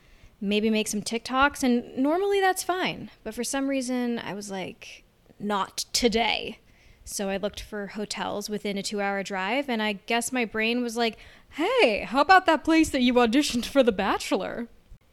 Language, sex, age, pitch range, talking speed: English, female, 20-39, 195-245 Hz, 175 wpm